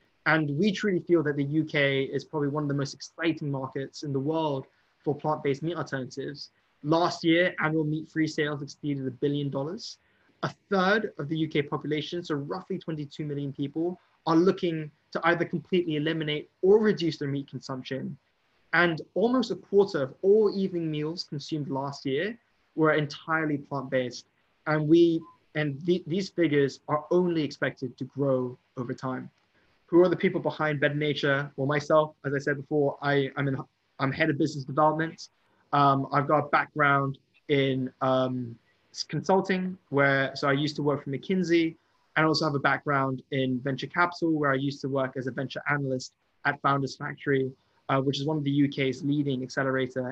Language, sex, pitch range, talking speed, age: English, male, 135-165 Hz, 175 wpm, 20-39